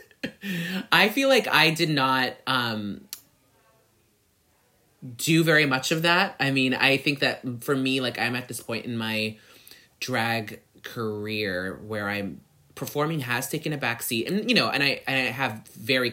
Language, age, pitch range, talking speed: English, 20-39, 105-140 Hz, 160 wpm